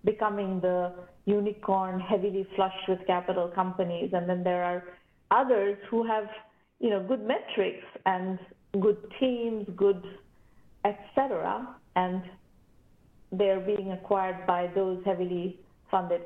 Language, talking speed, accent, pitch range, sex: English, 120 wpm, Indian, 180-220 Hz, female